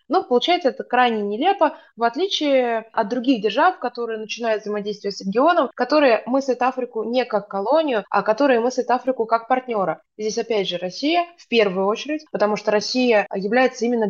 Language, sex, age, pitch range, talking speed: Russian, female, 20-39, 200-255 Hz, 170 wpm